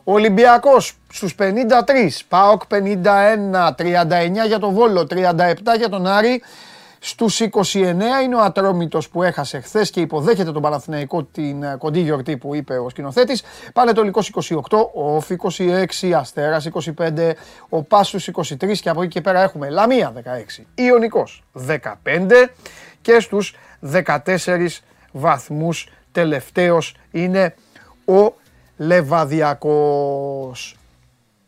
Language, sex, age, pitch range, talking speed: Greek, male, 30-49, 150-215 Hz, 120 wpm